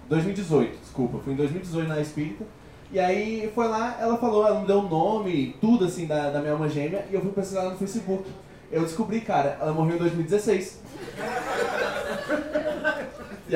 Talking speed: 175 wpm